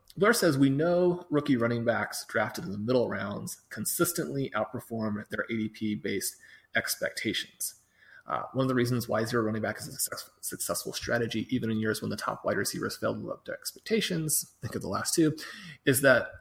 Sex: male